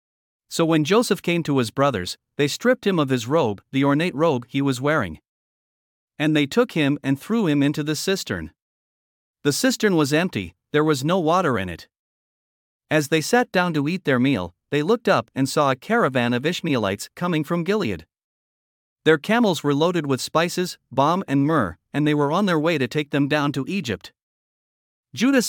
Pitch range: 135-175 Hz